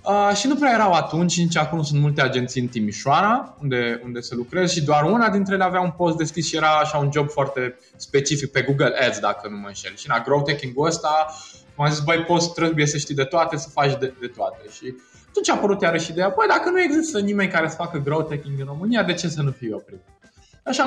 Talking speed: 245 wpm